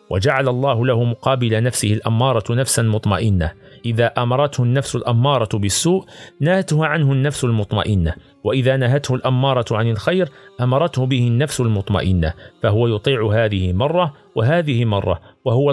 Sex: male